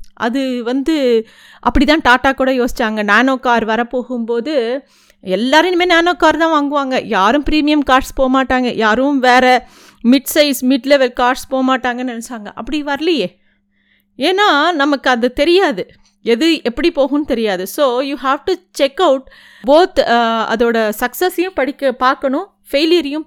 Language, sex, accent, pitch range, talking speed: Tamil, female, native, 230-290 Hz, 130 wpm